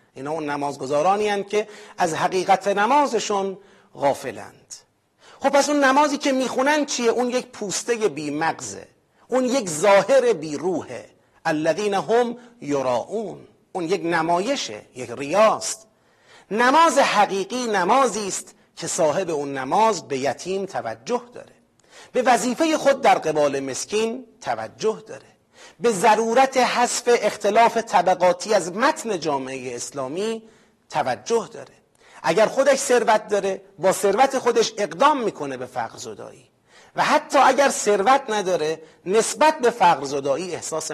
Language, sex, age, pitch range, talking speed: Persian, male, 40-59, 165-245 Hz, 125 wpm